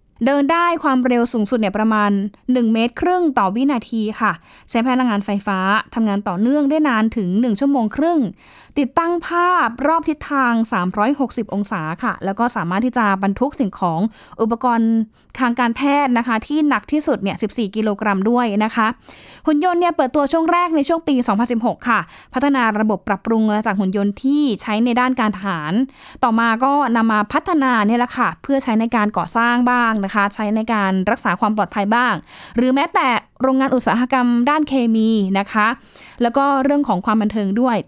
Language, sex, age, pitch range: Thai, female, 20-39, 210-260 Hz